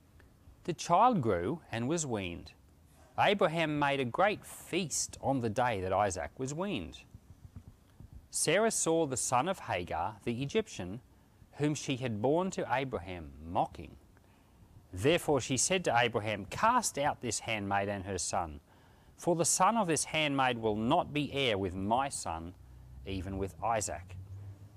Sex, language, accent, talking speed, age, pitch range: male, English, Australian, 150 wpm, 40-59, 95-140 Hz